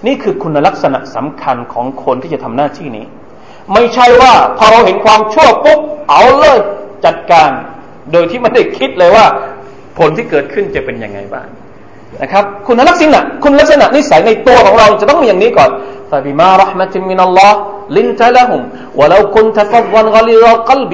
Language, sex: Thai, male